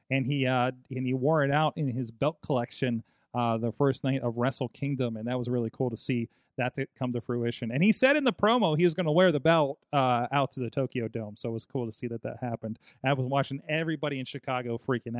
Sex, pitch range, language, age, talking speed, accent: male, 120-160 Hz, English, 30-49, 255 wpm, American